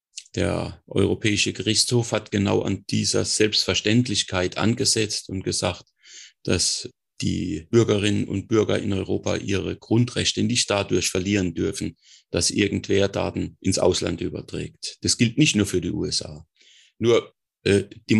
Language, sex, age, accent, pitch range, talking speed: German, male, 30-49, German, 95-110 Hz, 130 wpm